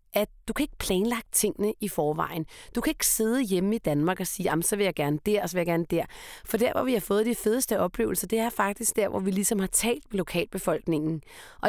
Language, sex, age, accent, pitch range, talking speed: Danish, female, 30-49, native, 165-220 Hz, 255 wpm